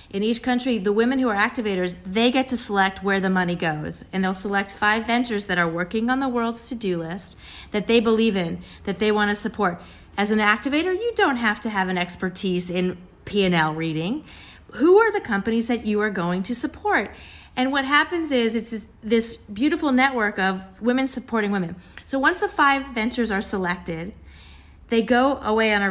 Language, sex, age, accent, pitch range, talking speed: English, female, 40-59, American, 190-245 Hz, 195 wpm